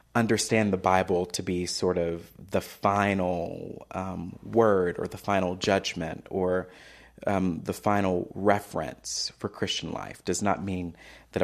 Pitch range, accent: 90-105 Hz, American